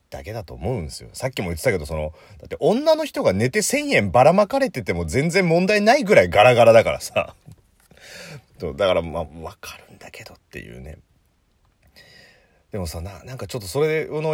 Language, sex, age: Japanese, male, 30-49